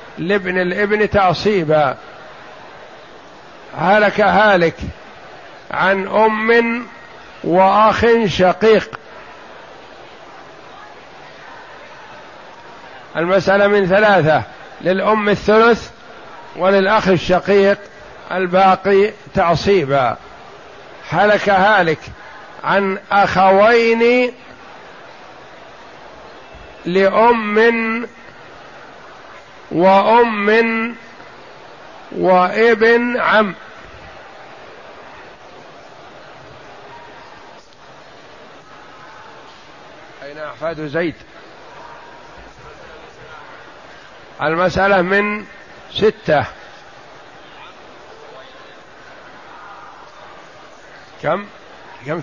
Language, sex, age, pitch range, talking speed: Arabic, male, 50-69, 180-220 Hz, 40 wpm